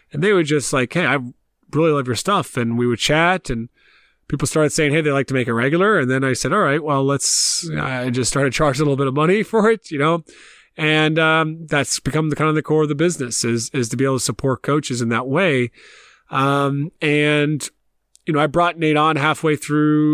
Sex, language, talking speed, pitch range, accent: male, English, 240 wpm, 130-155 Hz, American